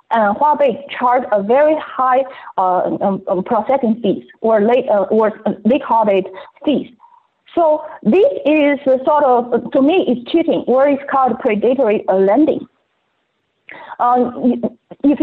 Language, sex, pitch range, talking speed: English, female, 230-300 Hz, 135 wpm